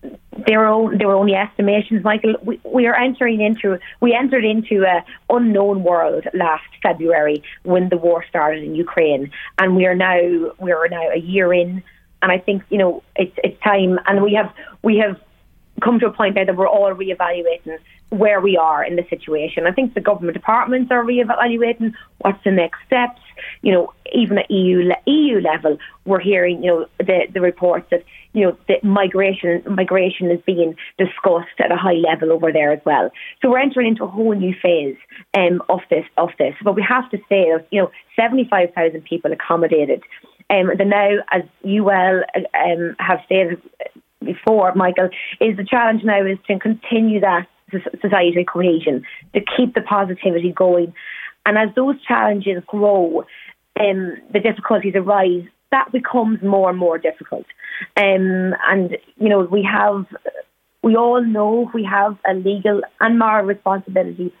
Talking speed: 175 wpm